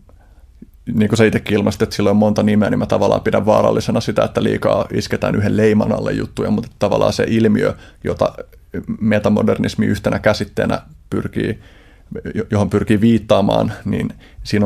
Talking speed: 145 wpm